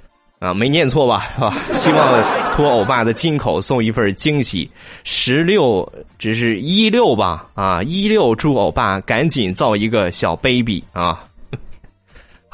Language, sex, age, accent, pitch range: Chinese, male, 20-39, native, 100-140 Hz